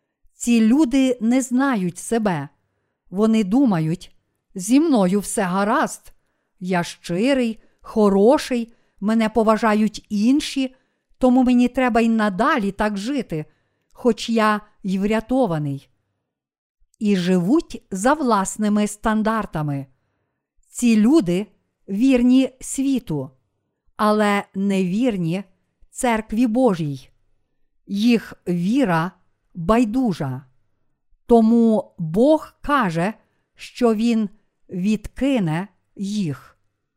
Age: 50-69